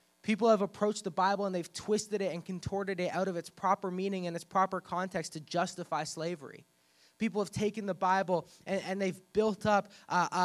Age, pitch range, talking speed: 20-39, 165-195 Hz, 200 wpm